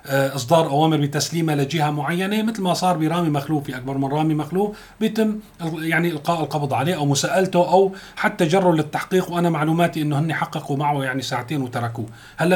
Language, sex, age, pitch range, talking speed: Arabic, male, 40-59, 140-180 Hz, 170 wpm